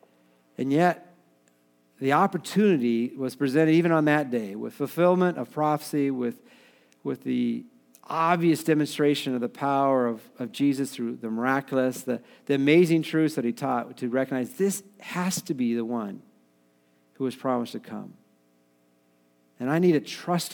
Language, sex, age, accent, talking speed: English, male, 50-69, American, 155 wpm